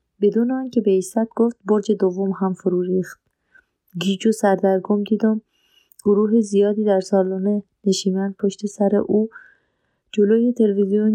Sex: female